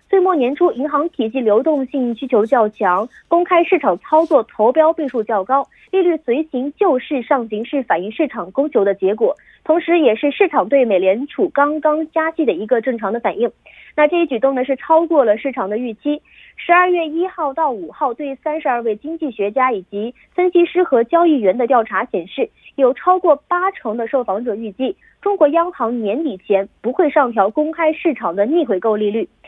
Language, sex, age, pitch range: Korean, female, 20-39, 235-335 Hz